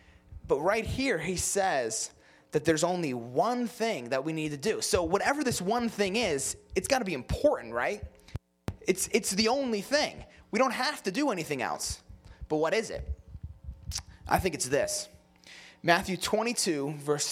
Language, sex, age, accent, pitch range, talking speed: English, male, 20-39, American, 120-180 Hz, 175 wpm